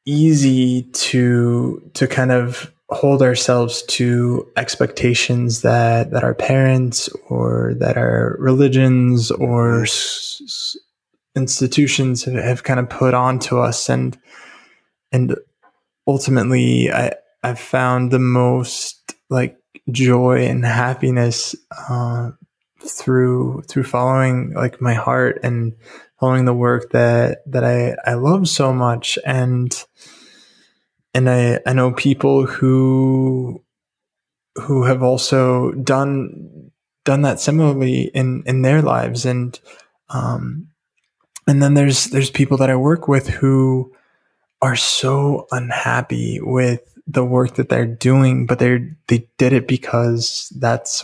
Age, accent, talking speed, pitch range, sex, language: 20-39, American, 125 wpm, 120-135 Hz, male, English